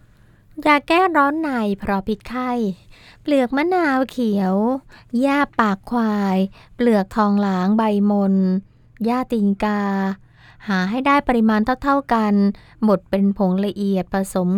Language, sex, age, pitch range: Thai, female, 20-39, 180-220 Hz